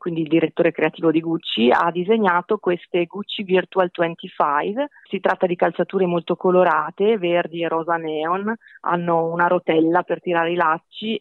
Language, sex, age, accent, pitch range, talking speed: Italian, female, 40-59, native, 165-195 Hz, 155 wpm